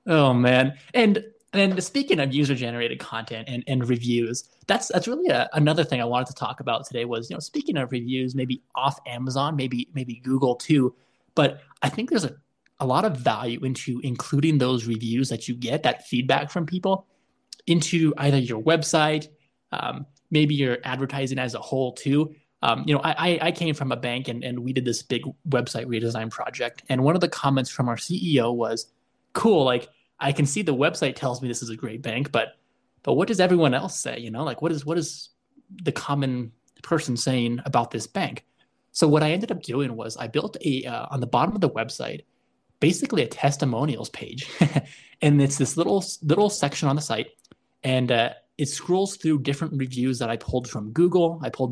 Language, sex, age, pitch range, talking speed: English, male, 20-39, 125-155 Hz, 205 wpm